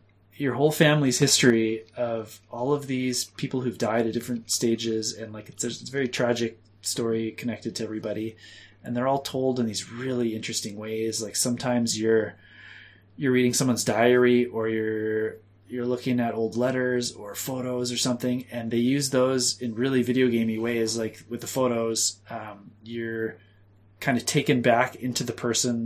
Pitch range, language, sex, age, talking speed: 105-125 Hz, English, male, 20-39, 175 wpm